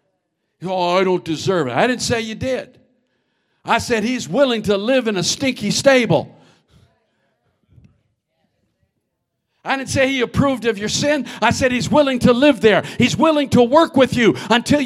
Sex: male